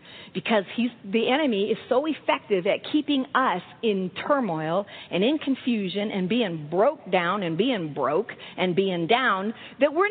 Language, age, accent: English, 50-69, American